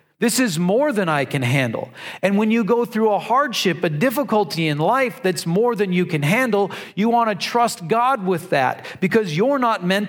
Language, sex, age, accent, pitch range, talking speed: English, male, 40-59, American, 180-225 Hz, 210 wpm